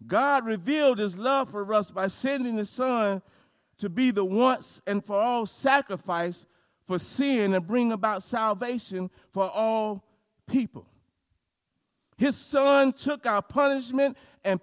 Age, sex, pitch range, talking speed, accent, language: 50-69, male, 175-260 Hz, 135 wpm, American, English